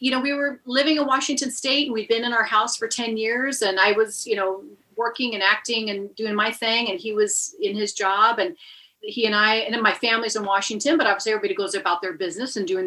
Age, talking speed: 40-59, 255 wpm